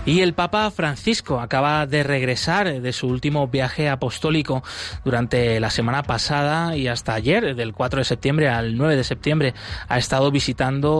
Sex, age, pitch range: male, 20-39, 125-155 Hz